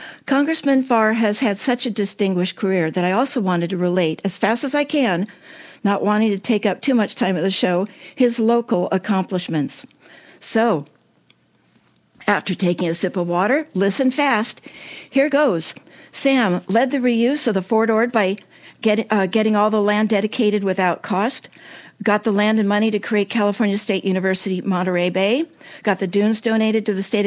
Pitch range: 195-240 Hz